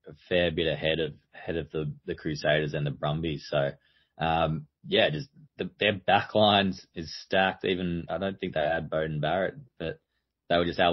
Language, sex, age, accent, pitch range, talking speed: English, male, 20-39, Australian, 80-90 Hz, 200 wpm